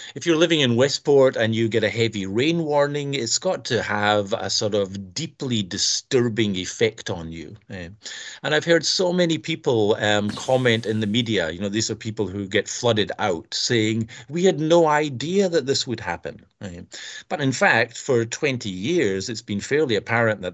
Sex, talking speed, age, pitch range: male, 185 wpm, 50-69, 105-130 Hz